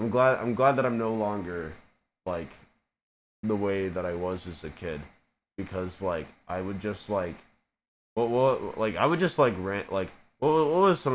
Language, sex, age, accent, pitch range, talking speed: English, male, 20-39, American, 90-115 Hz, 195 wpm